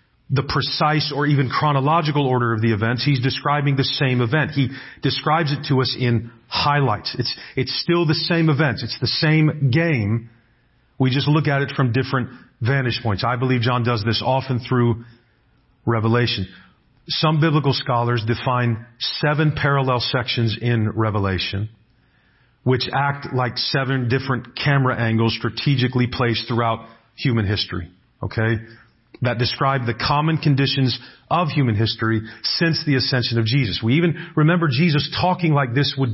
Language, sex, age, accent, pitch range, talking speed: English, male, 40-59, American, 120-145 Hz, 150 wpm